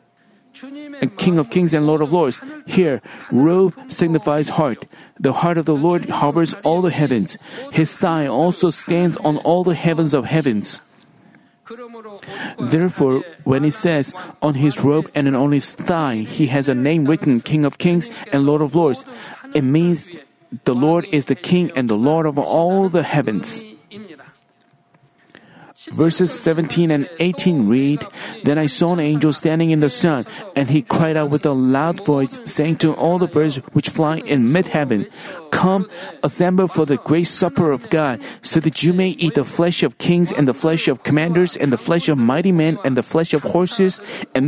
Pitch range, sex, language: 145-175 Hz, male, Korean